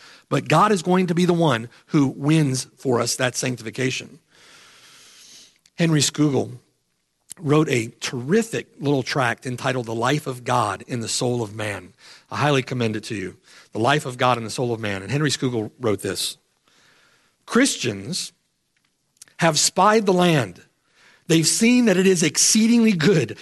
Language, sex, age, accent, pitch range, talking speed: English, male, 50-69, American, 130-195 Hz, 160 wpm